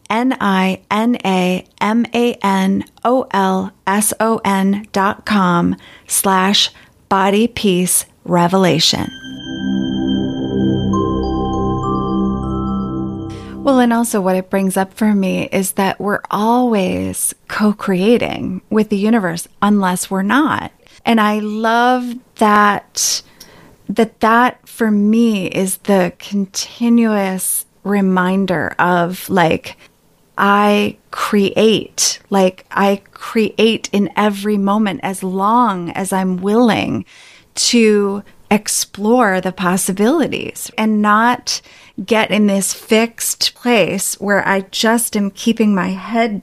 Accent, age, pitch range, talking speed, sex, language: American, 30-49, 185-220 Hz, 105 wpm, female, English